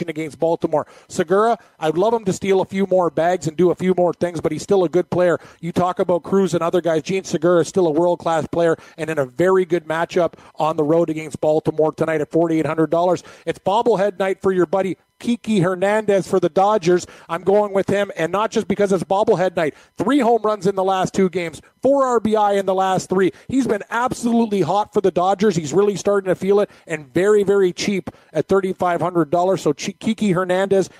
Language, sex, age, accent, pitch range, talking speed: English, male, 40-59, American, 170-195 Hz, 215 wpm